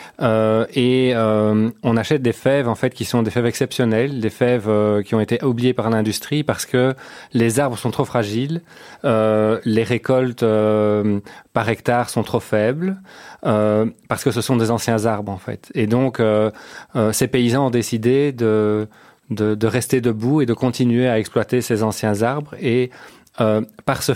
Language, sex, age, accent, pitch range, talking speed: French, male, 30-49, French, 110-130 Hz, 185 wpm